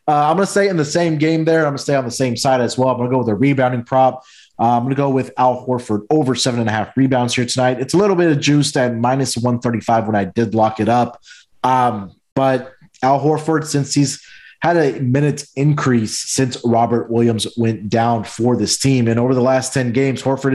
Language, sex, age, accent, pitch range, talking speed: English, male, 20-39, American, 115-135 Hz, 245 wpm